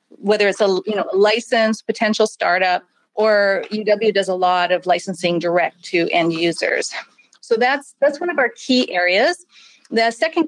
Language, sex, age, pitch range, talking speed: English, female, 40-59, 185-240 Hz, 165 wpm